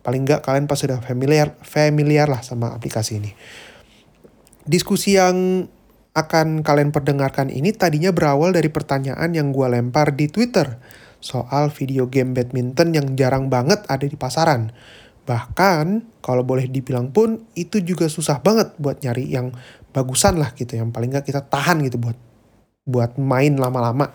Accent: native